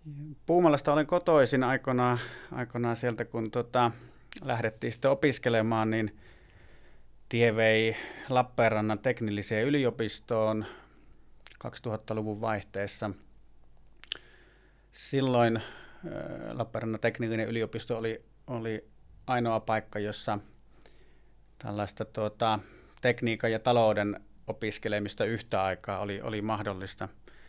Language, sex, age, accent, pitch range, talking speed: Finnish, male, 30-49, native, 105-120 Hz, 85 wpm